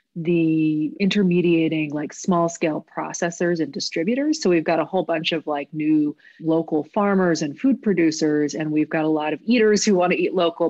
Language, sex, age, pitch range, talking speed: English, female, 30-49, 155-195 Hz, 190 wpm